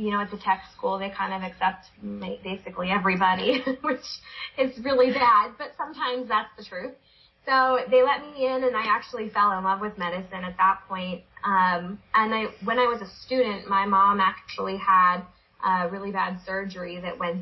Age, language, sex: 20-39, English, female